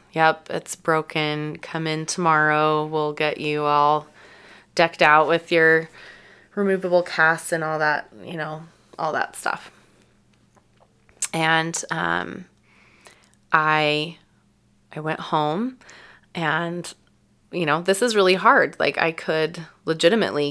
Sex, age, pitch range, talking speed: female, 20-39, 145-165 Hz, 120 wpm